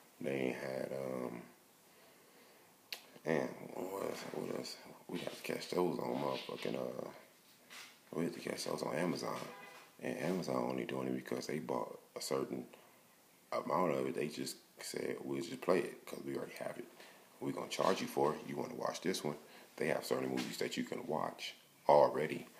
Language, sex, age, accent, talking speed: English, male, 30-49, American, 175 wpm